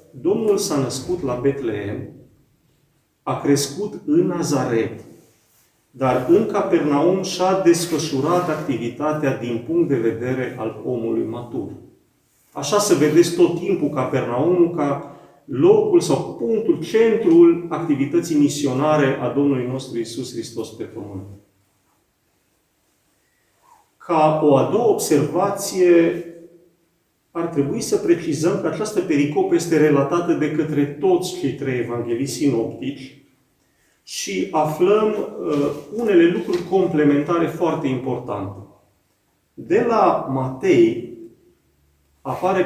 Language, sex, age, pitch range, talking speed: Romanian, male, 40-59, 130-180 Hz, 105 wpm